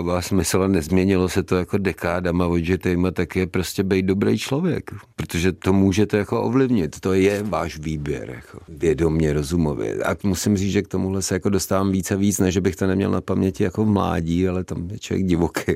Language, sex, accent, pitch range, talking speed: Czech, male, native, 80-95 Hz, 200 wpm